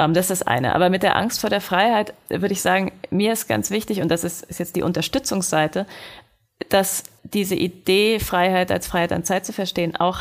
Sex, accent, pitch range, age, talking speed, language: female, German, 165-195 Hz, 30-49, 205 wpm, German